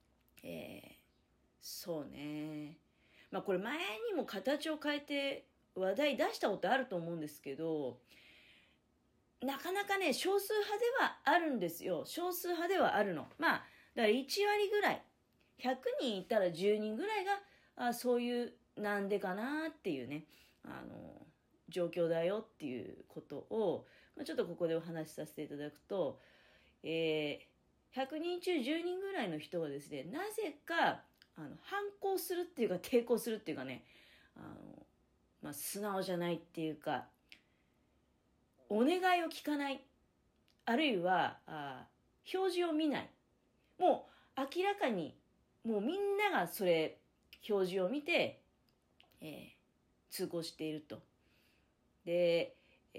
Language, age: Japanese, 40-59